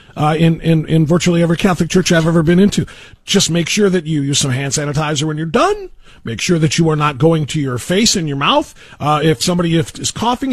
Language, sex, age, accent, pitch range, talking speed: English, male, 40-59, American, 125-170 Hz, 240 wpm